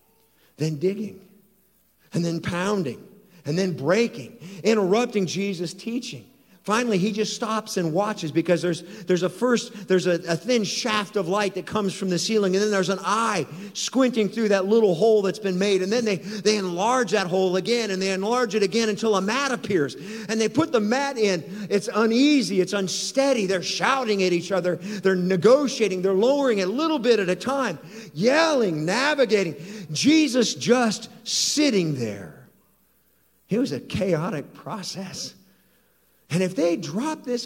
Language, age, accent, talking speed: English, 50-69, American, 170 wpm